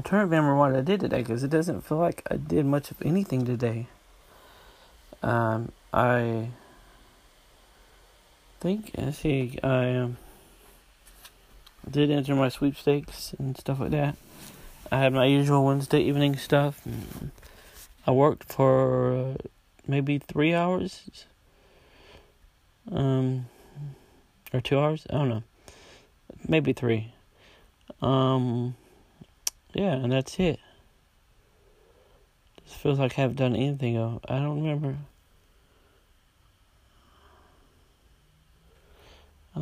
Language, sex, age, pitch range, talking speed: English, male, 30-49, 115-145 Hz, 115 wpm